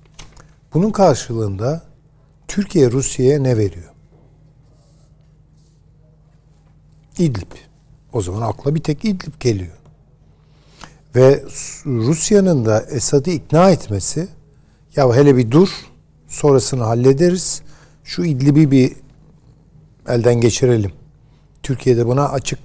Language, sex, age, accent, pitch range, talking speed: Turkish, male, 60-79, native, 115-150 Hz, 95 wpm